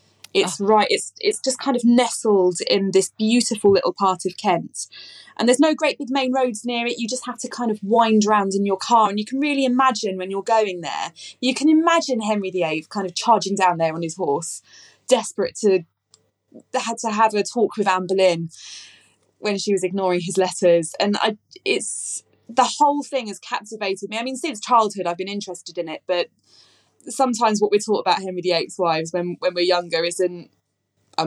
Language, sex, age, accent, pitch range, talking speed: English, female, 20-39, British, 170-220 Hz, 200 wpm